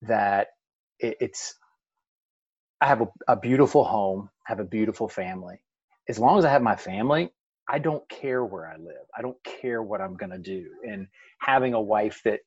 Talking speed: 190 wpm